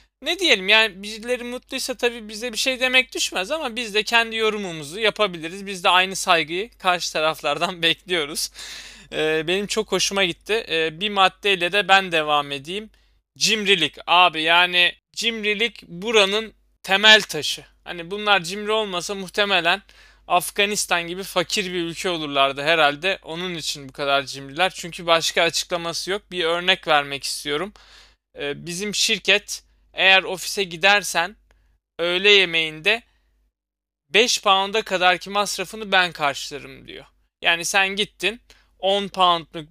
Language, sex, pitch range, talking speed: Turkish, male, 175-220 Hz, 135 wpm